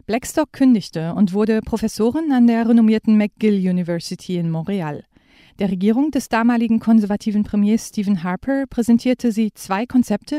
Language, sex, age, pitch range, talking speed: German, female, 40-59, 180-225 Hz, 140 wpm